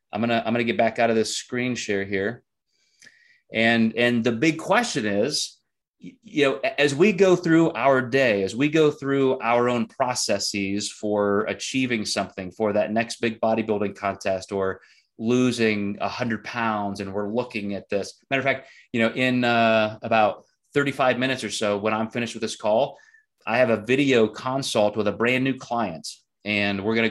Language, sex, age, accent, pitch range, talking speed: English, male, 30-49, American, 110-130 Hz, 185 wpm